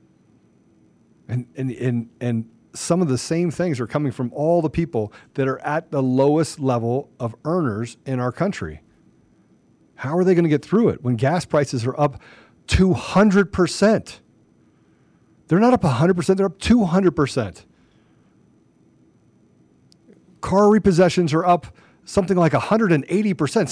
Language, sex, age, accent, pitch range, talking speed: English, male, 40-59, American, 125-185 Hz, 135 wpm